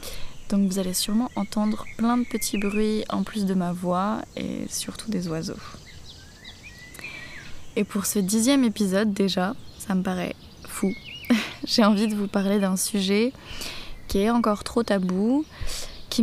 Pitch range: 185-220 Hz